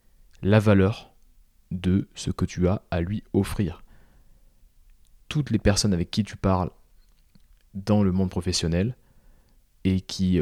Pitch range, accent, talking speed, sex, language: 90-115 Hz, French, 130 wpm, male, French